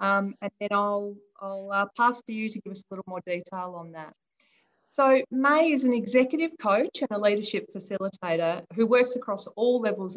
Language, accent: English, Australian